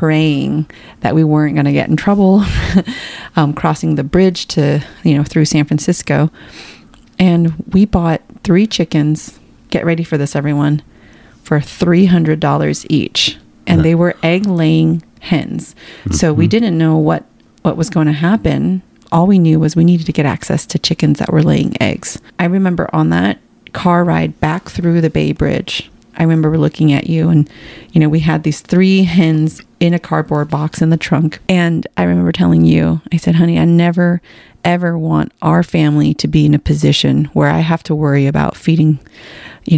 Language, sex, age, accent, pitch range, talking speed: English, female, 30-49, American, 150-175 Hz, 185 wpm